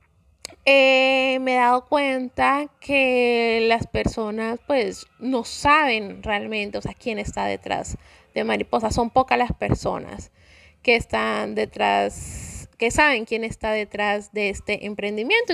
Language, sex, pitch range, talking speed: Spanish, female, 215-280 Hz, 130 wpm